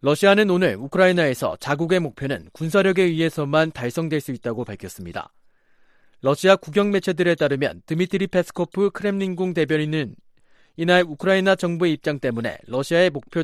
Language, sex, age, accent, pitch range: Korean, male, 40-59, native, 135-185 Hz